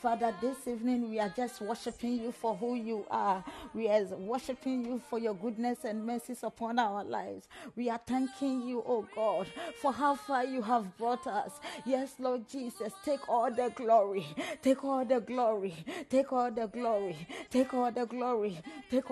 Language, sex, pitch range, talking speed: English, female, 235-285 Hz, 180 wpm